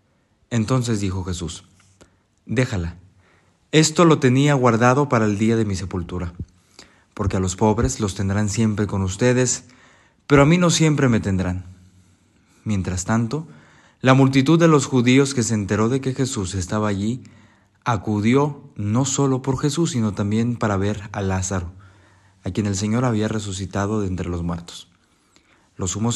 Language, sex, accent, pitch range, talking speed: Spanish, male, Mexican, 95-125 Hz, 155 wpm